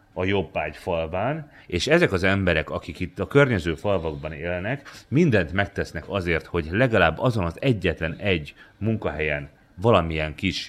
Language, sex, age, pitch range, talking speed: Hungarian, male, 30-49, 85-115 Hz, 145 wpm